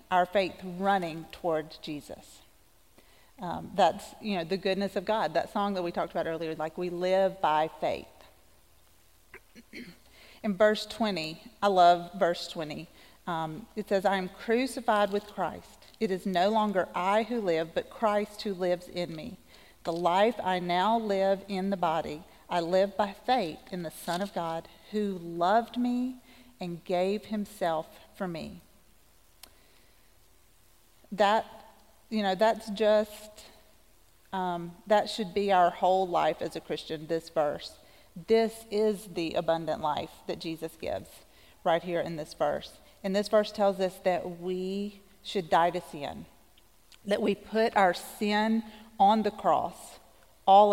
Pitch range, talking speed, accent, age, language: 170-210 Hz, 150 wpm, American, 40-59, English